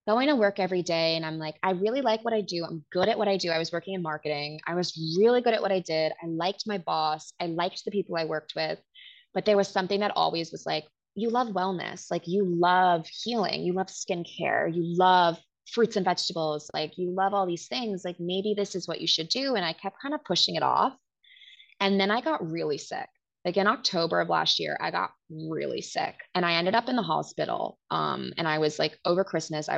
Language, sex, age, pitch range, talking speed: English, female, 20-39, 160-200 Hz, 240 wpm